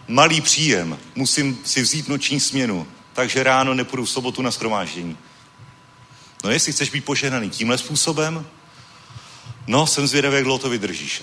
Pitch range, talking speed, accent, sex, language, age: 115-140 Hz, 145 wpm, native, male, Czech, 40-59